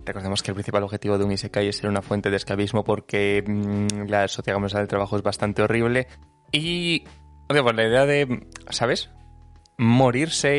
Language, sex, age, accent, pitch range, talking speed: Spanish, male, 20-39, Spanish, 100-120 Hz, 175 wpm